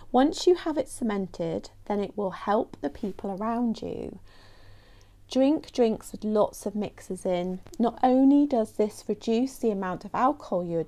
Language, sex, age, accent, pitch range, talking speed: English, female, 30-49, British, 185-260 Hz, 165 wpm